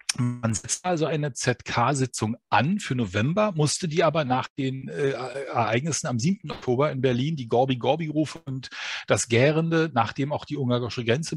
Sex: male